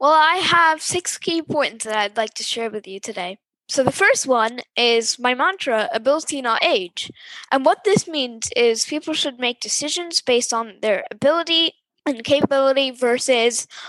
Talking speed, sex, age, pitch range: 175 wpm, female, 10-29, 225-290 Hz